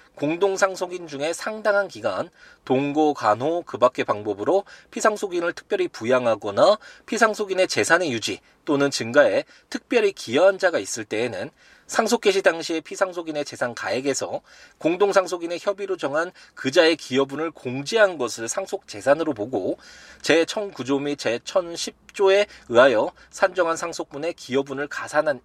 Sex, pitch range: male, 135-195 Hz